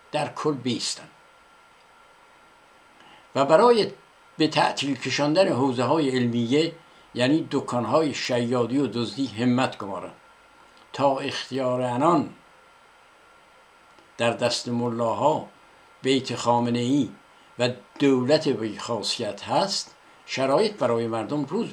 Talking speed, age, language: 95 wpm, 60-79, Persian